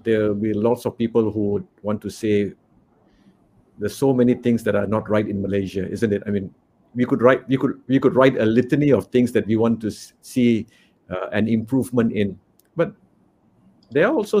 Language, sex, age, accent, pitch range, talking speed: English, male, 50-69, Malaysian, 100-120 Hz, 210 wpm